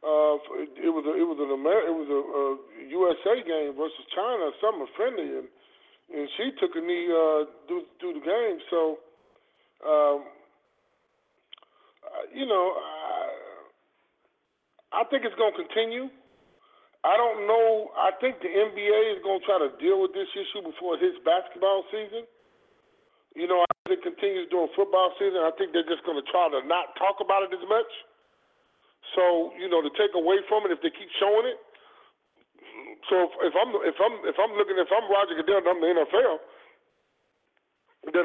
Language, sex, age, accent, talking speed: English, male, 30-49, American, 180 wpm